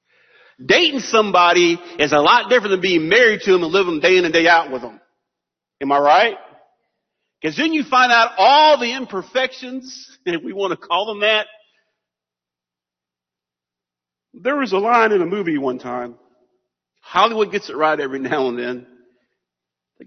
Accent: American